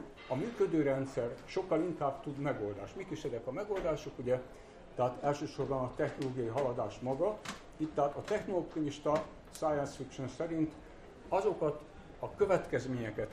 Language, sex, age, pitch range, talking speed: Hungarian, male, 60-79, 130-160 Hz, 125 wpm